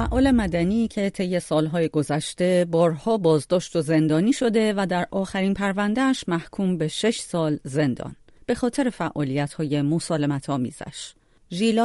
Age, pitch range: 40-59, 150-210 Hz